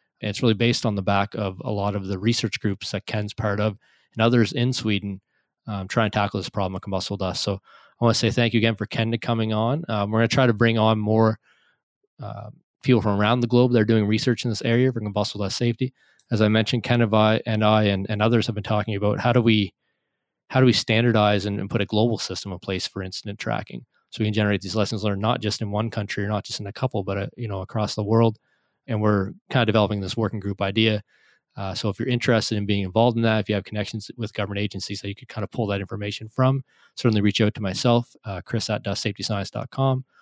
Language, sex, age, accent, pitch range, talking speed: English, male, 20-39, American, 100-115 Hz, 250 wpm